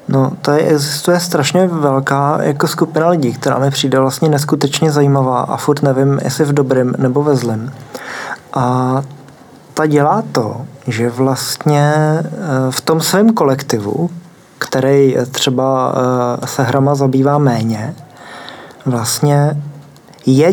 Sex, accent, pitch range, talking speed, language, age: male, native, 135-155 Hz, 125 wpm, Czech, 20-39